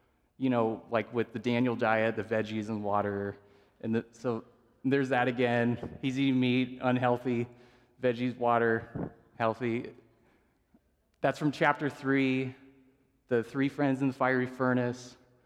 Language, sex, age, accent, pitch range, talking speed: English, male, 20-39, American, 110-135 Hz, 130 wpm